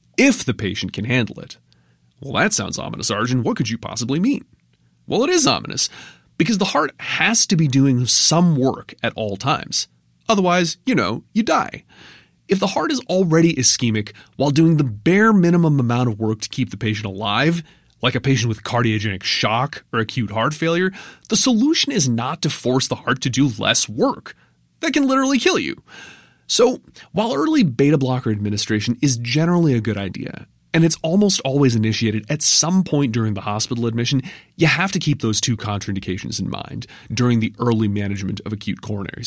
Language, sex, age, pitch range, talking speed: English, male, 30-49, 110-165 Hz, 185 wpm